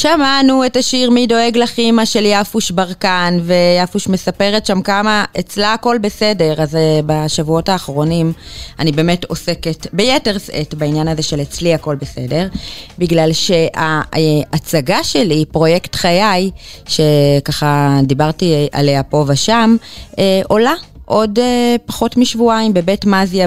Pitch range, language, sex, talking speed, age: 155-200 Hz, Hebrew, female, 130 wpm, 20-39